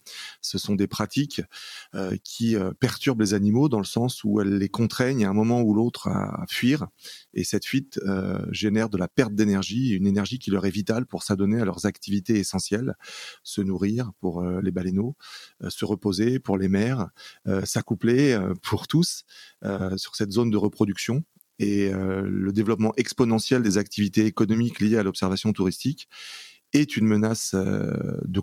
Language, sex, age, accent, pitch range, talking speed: French, male, 30-49, French, 100-120 Hz, 180 wpm